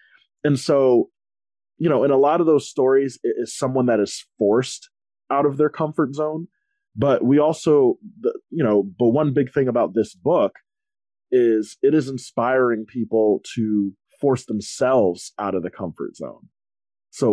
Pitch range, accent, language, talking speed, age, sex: 110-170 Hz, American, English, 165 wpm, 20-39, male